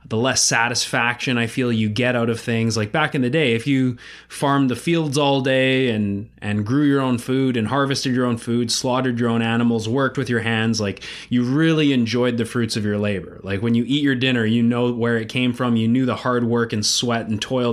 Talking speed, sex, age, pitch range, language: 240 wpm, male, 20-39, 110-130 Hz, English